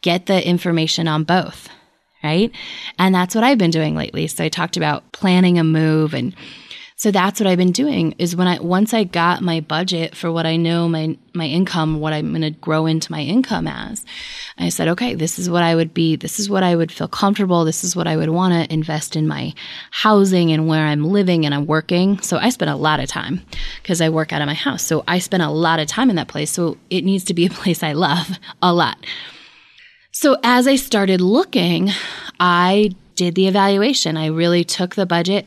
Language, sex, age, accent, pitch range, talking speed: English, female, 20-39, American, 155-190 Hz, 225 wpm